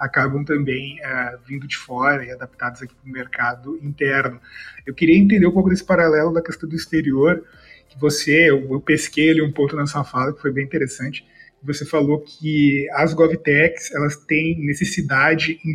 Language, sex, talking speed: Portuguese, male, 185 wpm